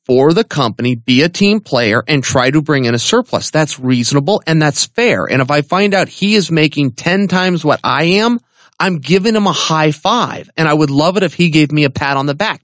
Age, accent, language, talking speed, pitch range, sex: 30-49, American, English, 245 wpm, 150-220 Hz, male